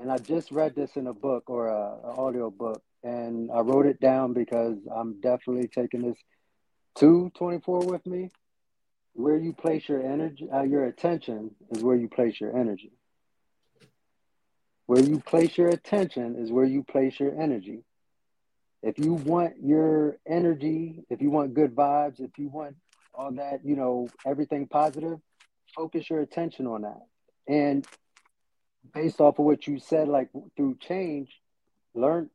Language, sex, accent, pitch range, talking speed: English, male, American, 130-165 Hz, 160 wpm